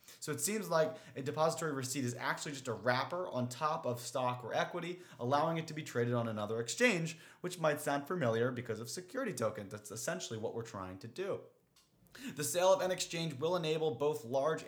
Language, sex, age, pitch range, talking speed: English, male, 30-49, 120-155 Hz, 205 wpm